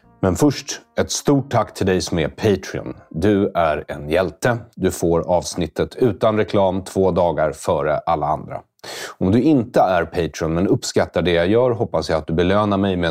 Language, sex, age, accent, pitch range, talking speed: English, male, 30-49, Swedish, 85-110 Hz, 190 wpm